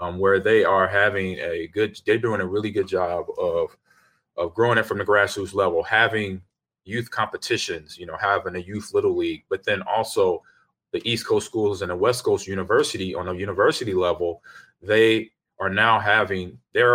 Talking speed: 185 wpm